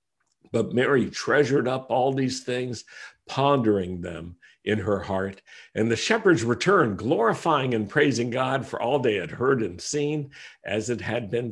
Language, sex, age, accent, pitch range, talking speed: English, male, 50-69, American, 105-135 Hz, 160 wpm